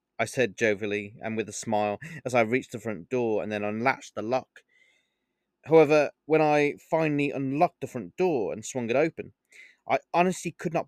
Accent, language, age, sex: British, English, 20-39, male